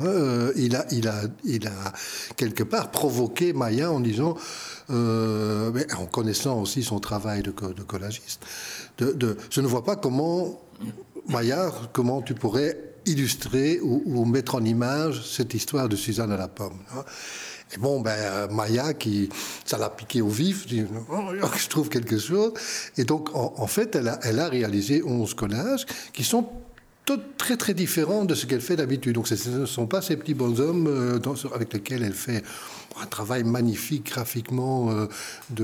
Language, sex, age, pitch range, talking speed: French, male, 60-79, 110-140 Hz, 180 wpm